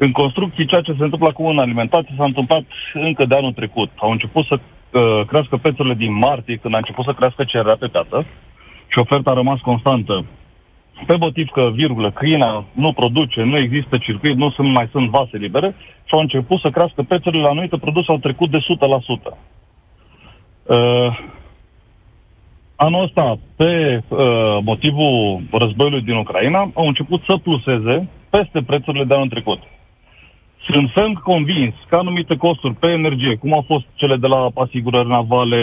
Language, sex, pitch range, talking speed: Romanian, male, 115-145 Hz, 165 wpm